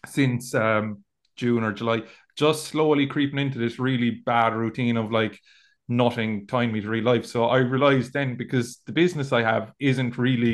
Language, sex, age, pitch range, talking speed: English, male, 20-39, 115-130 Hz, 180 wpm